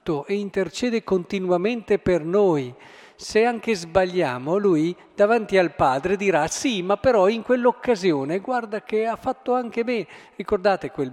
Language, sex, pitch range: Italian, male, 150-220 Hz